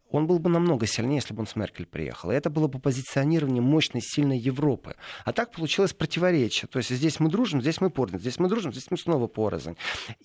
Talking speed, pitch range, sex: 215 wpm, 110-155 Hz, male